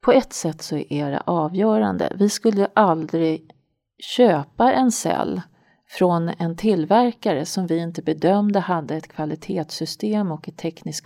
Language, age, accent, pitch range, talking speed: Swedish, 40-59, native, 160-210 Hz, 140 wpm